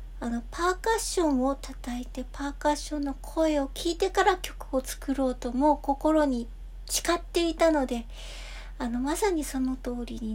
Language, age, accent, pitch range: Japanese, 60-79, native, 240-305 Hz